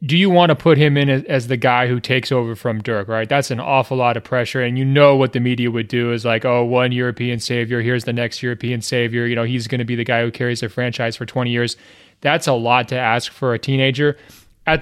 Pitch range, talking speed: 115-130 Hz, 265 wpm